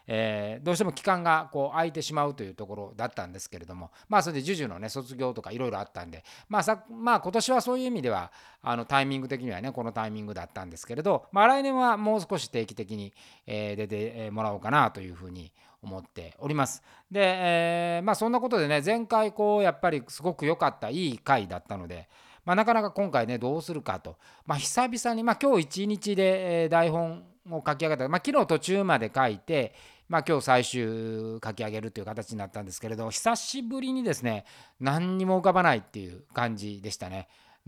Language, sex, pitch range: Japanese, male, 110-180 Hz